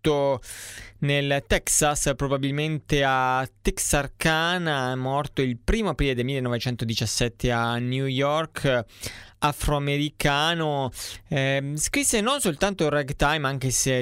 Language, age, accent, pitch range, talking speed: Italian, 20-39, native, 115-140 Hz, 100 wpm